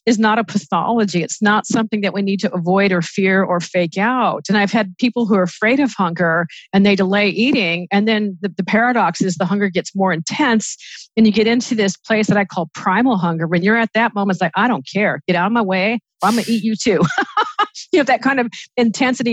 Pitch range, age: 190-245 Hz, 50-69